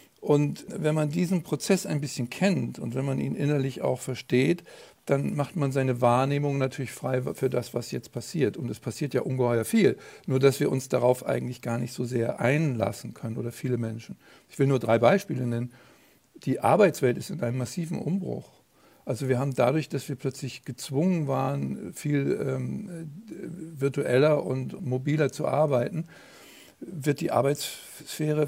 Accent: German